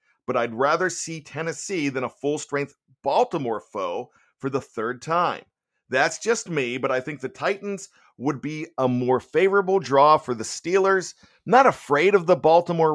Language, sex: English, male